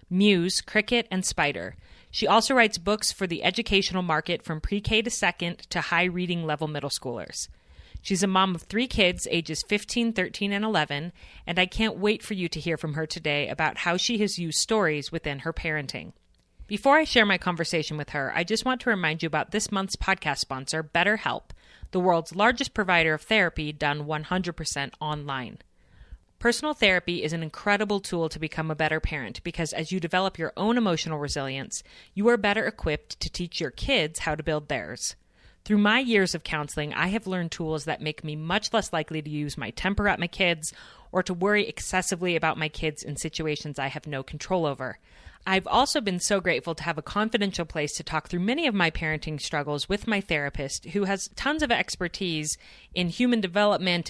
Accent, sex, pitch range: American, female, 155-200 Hz